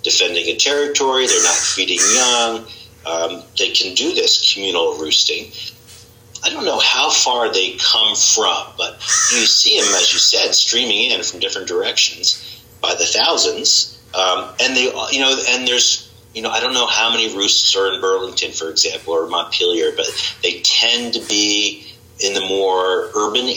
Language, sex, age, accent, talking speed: English, male, 40-59, American, 175 wpm